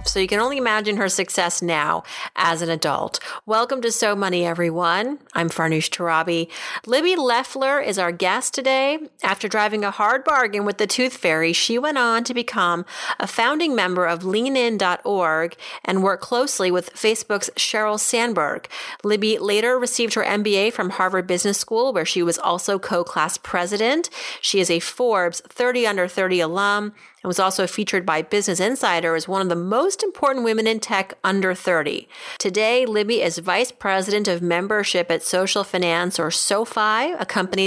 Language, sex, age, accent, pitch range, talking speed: English, female, 30-49, American, 180-225 Hz, 170 wpm